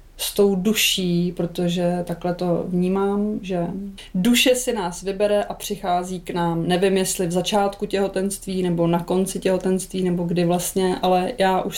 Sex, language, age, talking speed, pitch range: female, Czech, 20-39, 160 wpm, 180-205 Hz